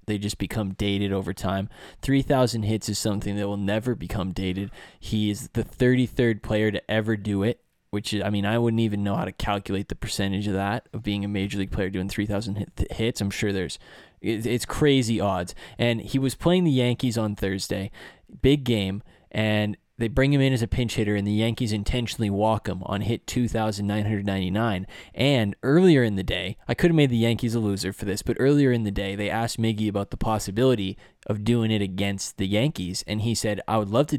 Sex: male